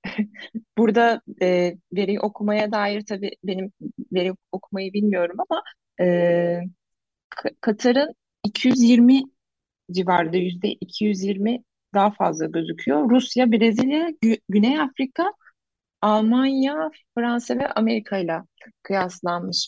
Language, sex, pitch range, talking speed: Turkish, female, 175-225 Hz, 90 wpm